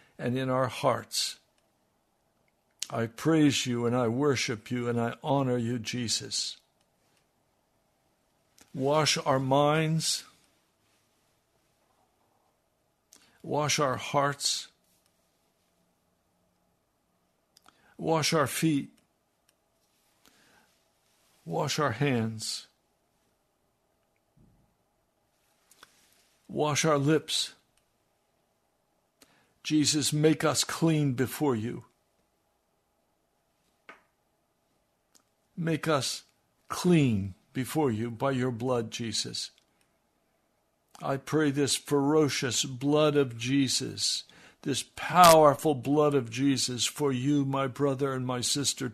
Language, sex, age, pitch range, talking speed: English, male, 60-79, 125-155 Hz, 80 wpm